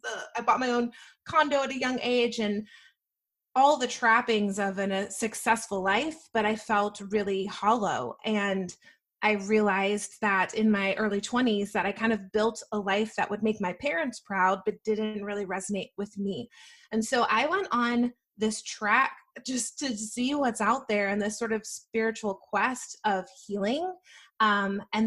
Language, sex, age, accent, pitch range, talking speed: English, female, 20-39, American, 205-235 Hz, 170 wpm